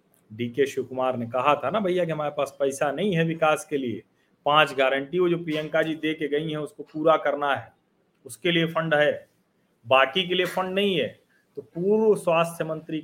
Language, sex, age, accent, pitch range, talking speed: Hindi, male, 40-59, native, 130-160 Hz, 200 wpm